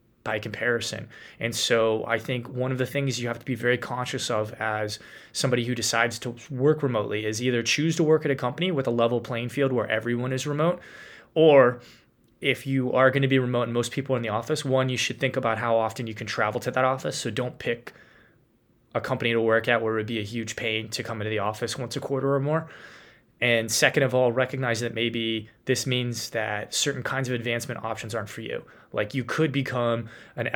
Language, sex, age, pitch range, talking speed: English, male, 20-39, 115-130 Hz, 230 wpm